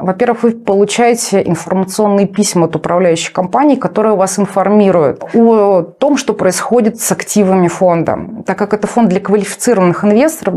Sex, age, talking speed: female, 30-49, 140 wpm